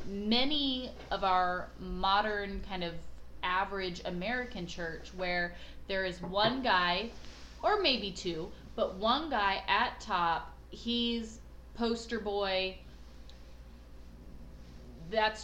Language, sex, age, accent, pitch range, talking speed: English, female, 30-49, American, 170-205 Hz, 100 wpm